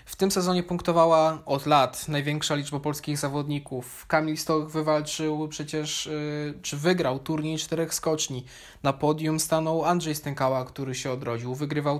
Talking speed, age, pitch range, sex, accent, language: 140 wpm, 20-39, 140-160 Hz, male, native, Polish